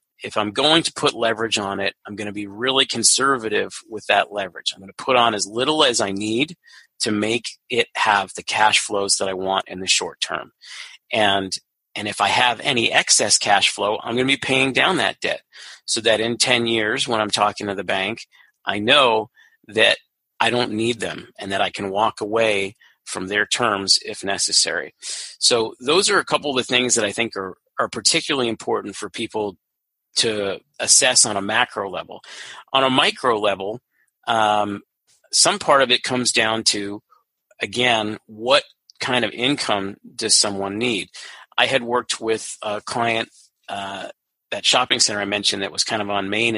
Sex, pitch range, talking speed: male, 105-125 Hz, 190 wpm